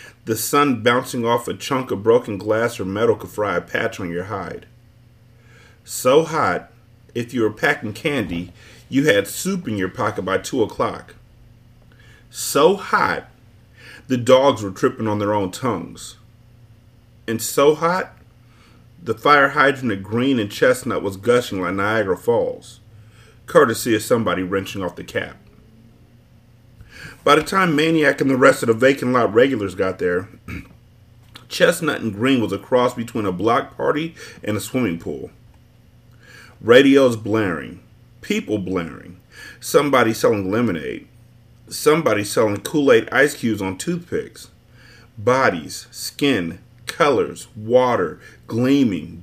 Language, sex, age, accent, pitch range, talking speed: English, male, 40-59, American, 110-125 Hz, 140 wpm